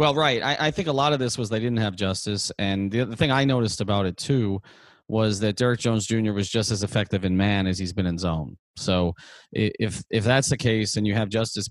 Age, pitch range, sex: 30-49, 105-125 Hz, male